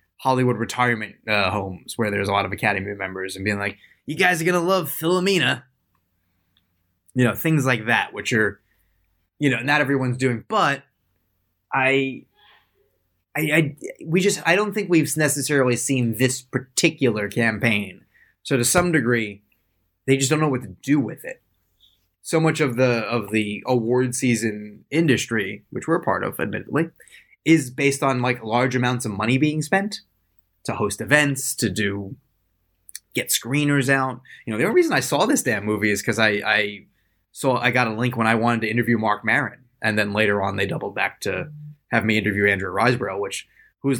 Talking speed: 185 wpm